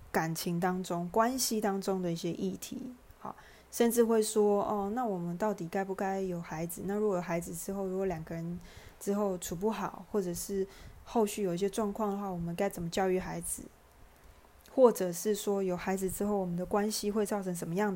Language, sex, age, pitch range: Chinese, female, 20-39, 180-210 Hz